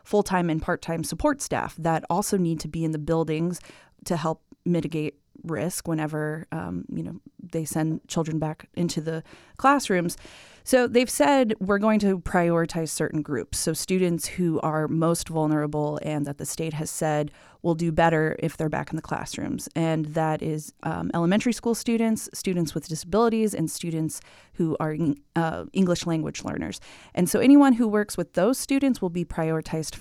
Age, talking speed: 30-49, 175 wpm